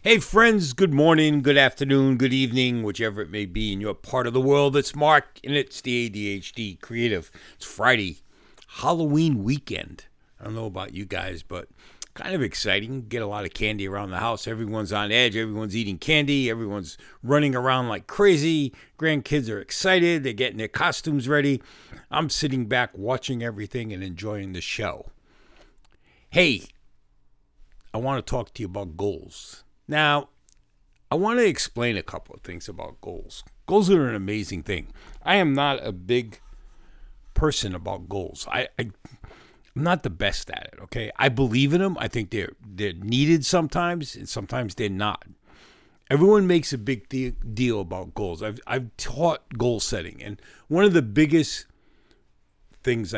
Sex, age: male, 50-69